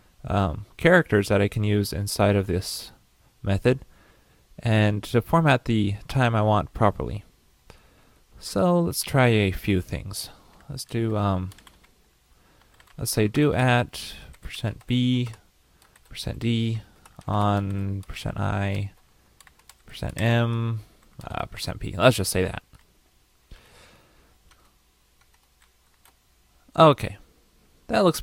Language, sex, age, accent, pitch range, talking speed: English, male, 20-39, American, 95-125 Hz, 105 wpm